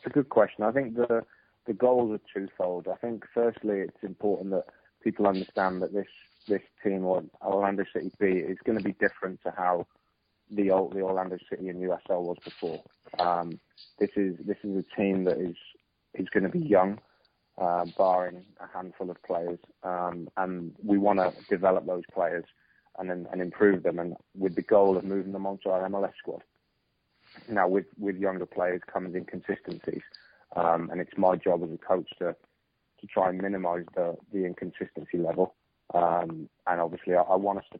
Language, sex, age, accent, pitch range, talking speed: English, male, 20-39, British, 90-100 Hz, 190 wpm